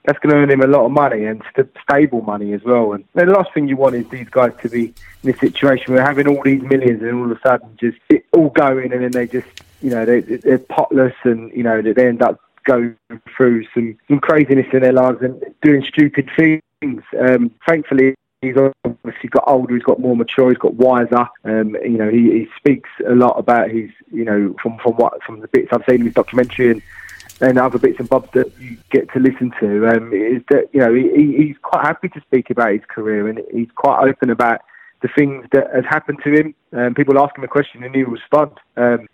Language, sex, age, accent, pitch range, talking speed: English, male, 20-39, British, 120-140 Hz, 240 wpm